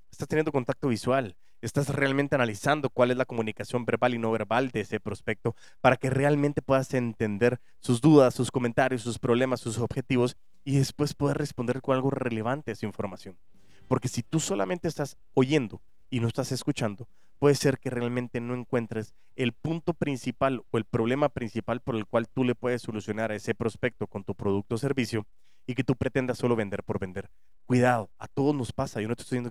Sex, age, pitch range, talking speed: male, 30-49, 110-130 Hz, 195 wpm